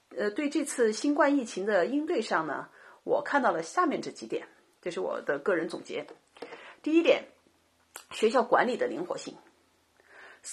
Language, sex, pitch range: Chinese, female, 215-345 Hz